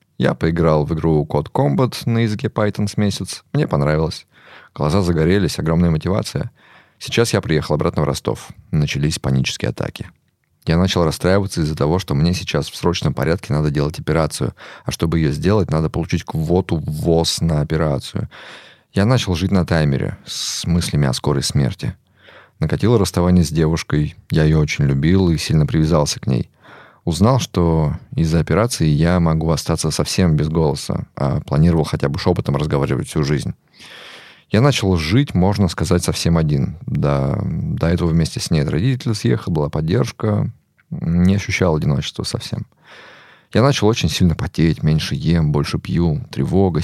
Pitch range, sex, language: 80-100 Hz, male, Russian